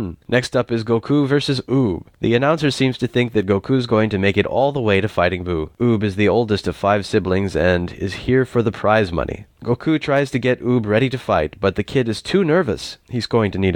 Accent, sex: American, male